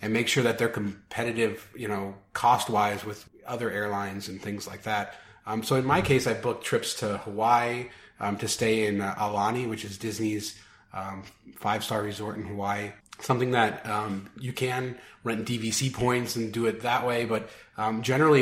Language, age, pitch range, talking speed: English, 30-49, 105-120 Hz, 190 wpm